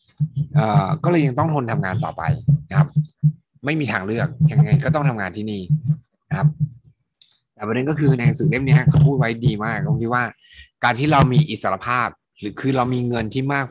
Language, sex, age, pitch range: Thai, male, 20-39, 115-150 Hz